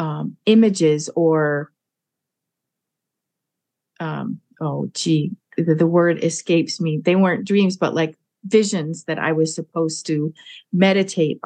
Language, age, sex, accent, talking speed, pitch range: English, 40-59, female, American, 120 wpm, 160-185 Hz